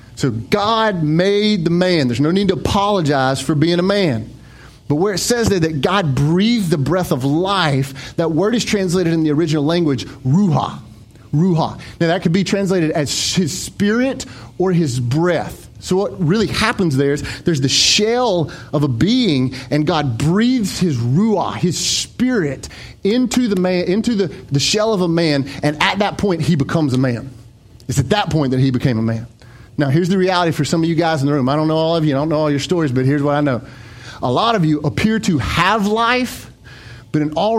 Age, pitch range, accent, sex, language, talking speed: 30-49, 125-180 Hz, American, male, English, 210 wpm